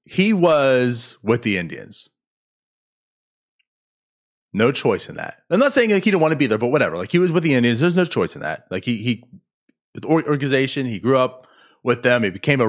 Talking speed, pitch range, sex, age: 215 wpm, 125-180 Hz, male, 20-39